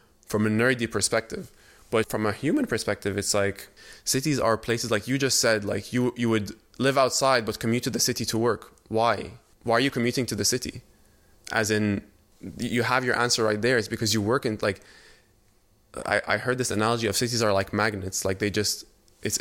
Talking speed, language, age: 205 wpm, English, 20-39